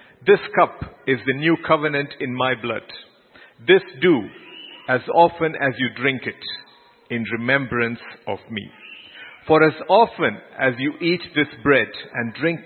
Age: 50-69